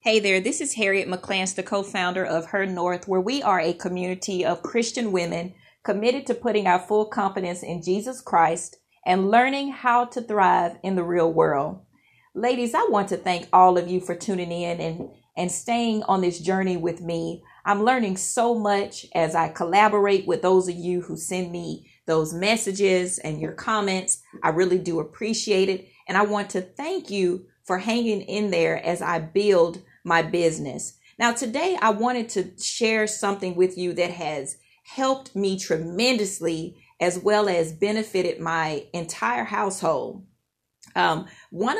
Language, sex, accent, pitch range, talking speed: English, female, American, 175-210 Hz, 170 wpm